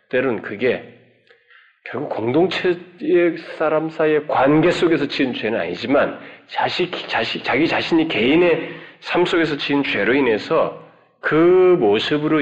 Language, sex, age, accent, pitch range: Korean, male, 40-59, native, 115-175 Hz